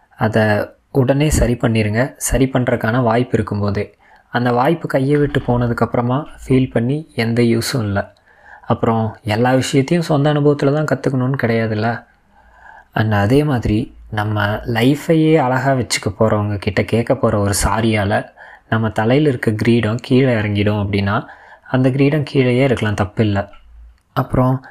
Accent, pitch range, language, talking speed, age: native, 110-135 Hz, Tamil, 125 wpm, 20-39